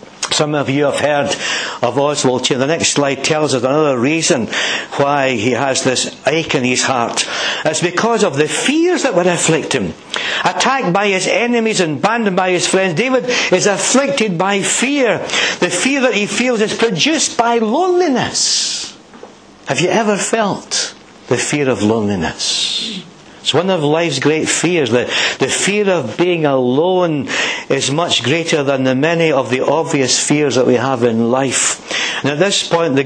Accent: British